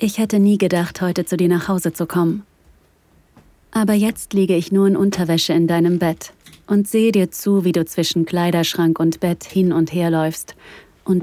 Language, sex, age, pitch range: German, female, 30-49, 160-190 Hz